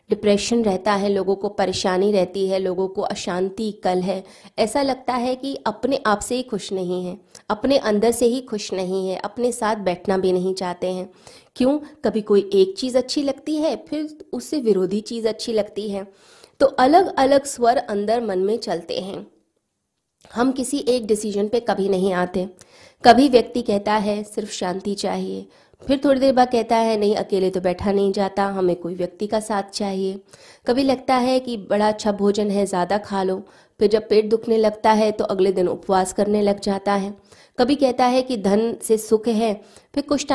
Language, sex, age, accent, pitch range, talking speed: Hindi, female, 20-39, native, 195-240 Hz, 185 wpm